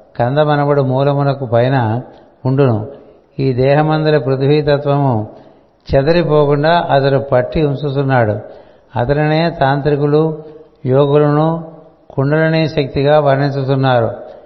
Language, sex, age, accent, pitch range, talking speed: Telugu, male, 60-79, native, 125-150 Hz, 70 wpm